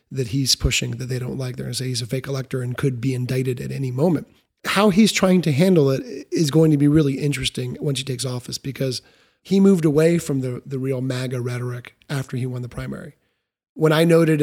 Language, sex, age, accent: English, male, 30-49, American